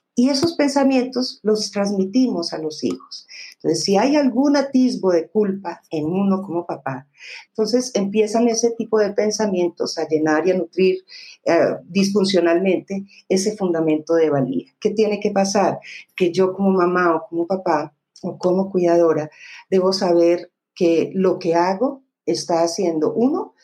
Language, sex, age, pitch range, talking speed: Spanish, female, 50-69, 165-215 Hz, 150 wpm